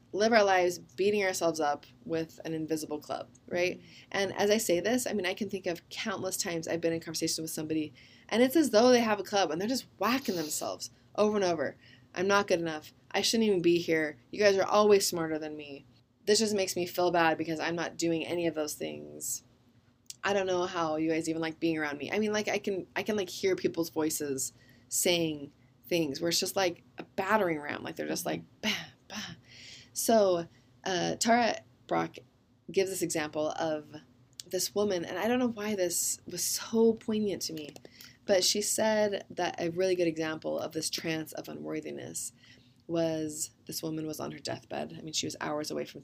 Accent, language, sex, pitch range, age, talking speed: American, English, female, 125-190 Hz, 20-39, 210 wpm